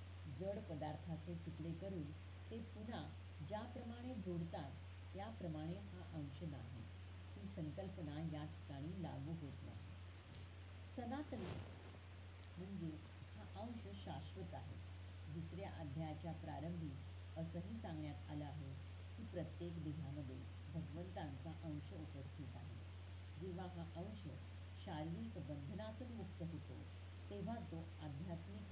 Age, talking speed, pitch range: 50-69, 90 wpm, 85-90 Hz